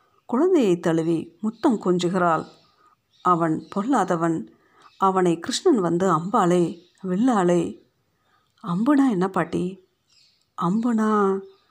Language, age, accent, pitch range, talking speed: Tamil, 50-69, native, 175-230 Hz, 75 wpm